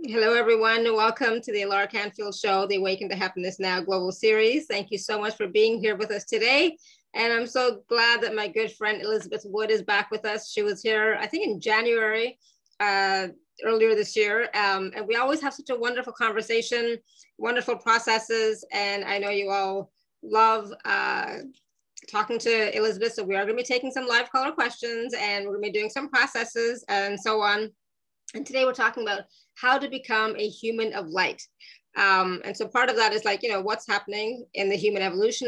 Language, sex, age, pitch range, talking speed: English, female, 30-49, 200-235 Hz, 205 wpm